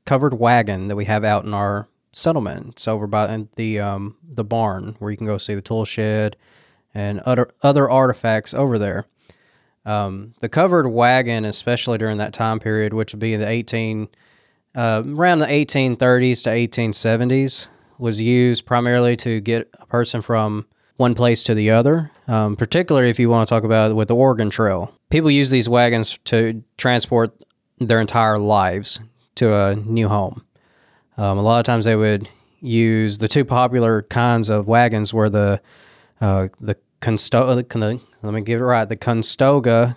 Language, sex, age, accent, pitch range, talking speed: English, male, 20-39, American, 110-125 Hz, 180 wpm